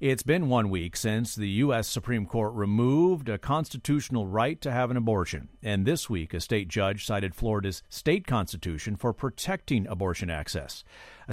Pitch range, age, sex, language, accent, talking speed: 100-135 Hz, 50-69, male, English, American, 170 wpm